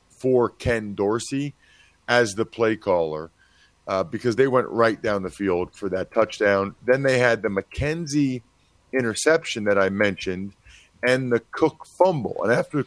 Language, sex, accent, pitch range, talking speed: English, male, American, 100-135 Hz, 155 wpm